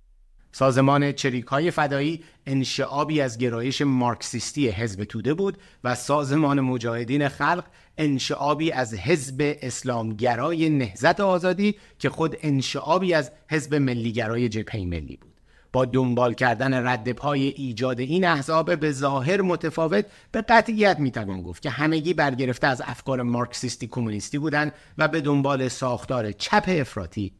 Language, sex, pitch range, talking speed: Persian, male, 115-150 Hz, 125 wpm